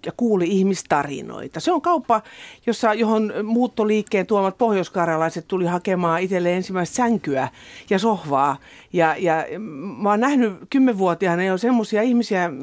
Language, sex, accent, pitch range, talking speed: Finnish, female, native, 160-225 Hz, 130 wpm